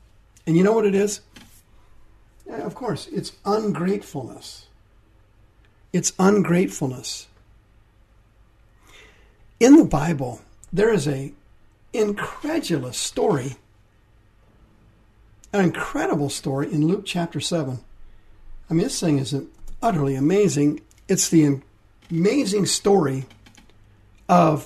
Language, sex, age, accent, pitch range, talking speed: English, male, 50-69, American, 105-165 Hz, 95 wpm